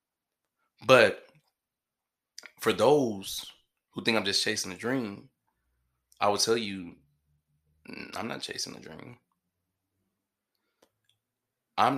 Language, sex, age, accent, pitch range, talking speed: English, male, 20-39, American, 95-105 Hz, 100 wpm